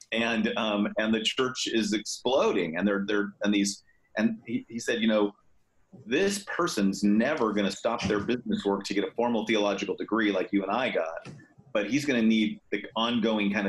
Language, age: English, 40-59